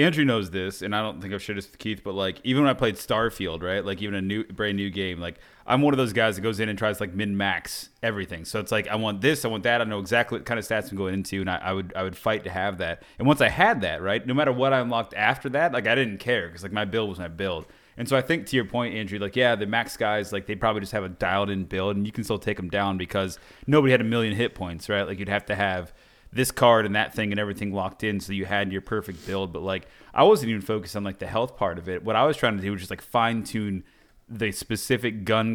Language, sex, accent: English, male, American